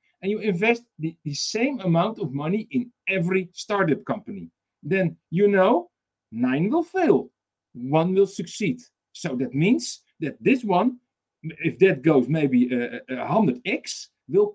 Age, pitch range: 50-69, 170-235 Hz